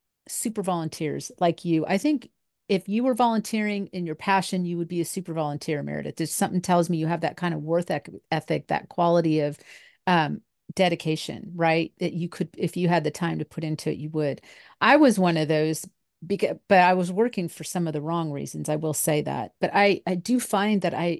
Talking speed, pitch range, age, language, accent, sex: 215 wpm, 170-210 Hz, 40-59, English, American, female